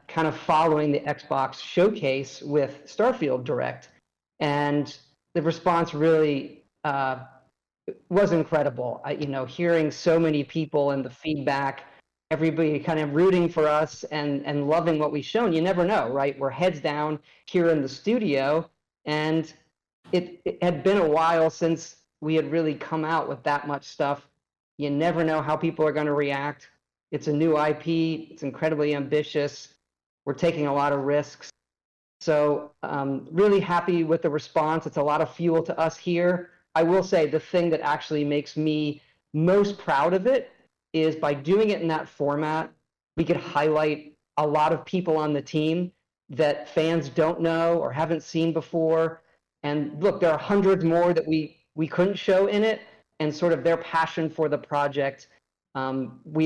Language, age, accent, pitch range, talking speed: English, 40-59, American, 145-165 Hz, 175 wpm